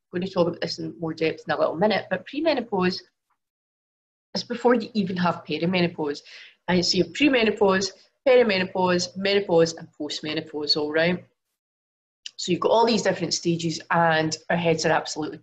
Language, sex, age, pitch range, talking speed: English, female, 30-49, 160-195 Hz, 170 wpm